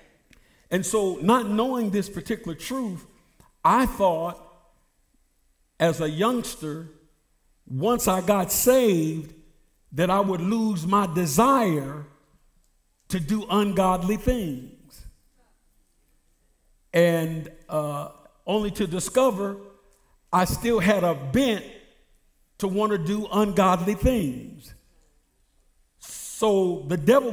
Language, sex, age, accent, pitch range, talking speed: English, male, 50-69, American, 185-235 Hz, 100 wpm